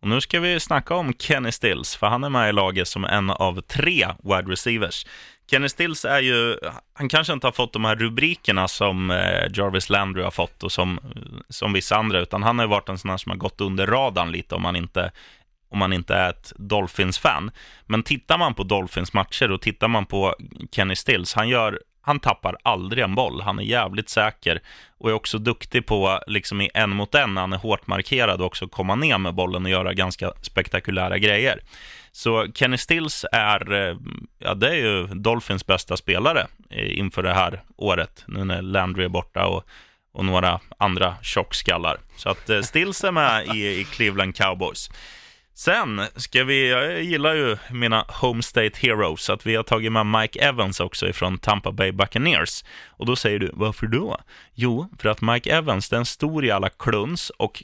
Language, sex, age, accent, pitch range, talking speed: Swedish, male, 20-39, native, 95-120 Hz, 190 wpm